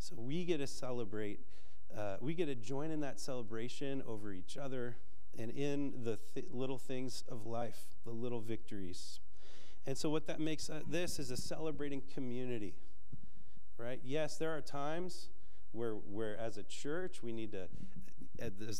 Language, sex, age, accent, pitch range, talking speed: English, male, 30-49, American, 95-140 Hz, 165 wpm